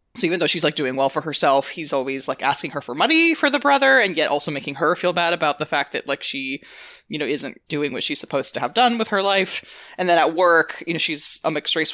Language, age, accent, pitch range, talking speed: English, 20-39, American, 145-200 Hz, 270 wpm